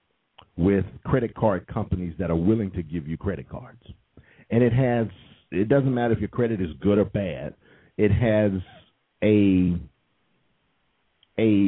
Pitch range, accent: 90-120 Hz, American